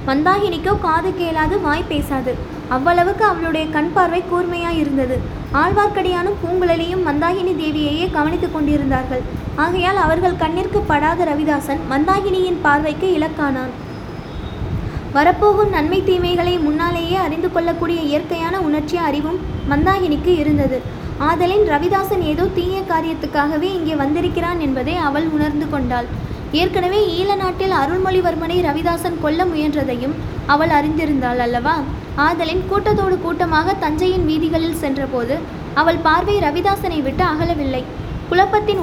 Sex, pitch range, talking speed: female, 300-365 Hz, 105 wpm